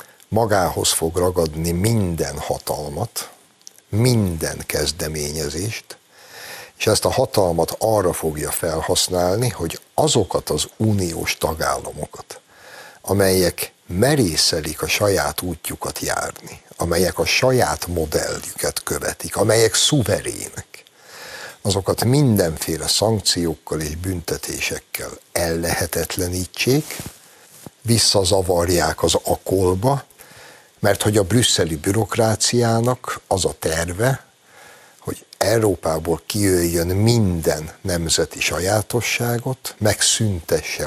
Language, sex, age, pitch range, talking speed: Hungarian, male, 60-79, 85-115 Hz, 80 wpm